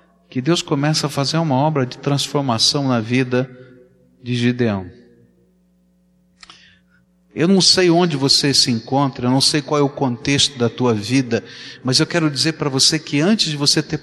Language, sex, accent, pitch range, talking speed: Portuguese, male, Brazilian, 130-200 Hz, 175 wpm